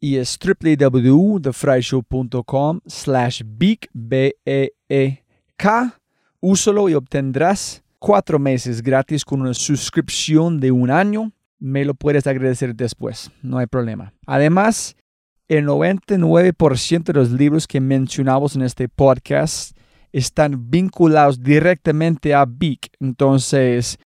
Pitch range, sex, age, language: 130-170 Hz, male, 30-49, Spanish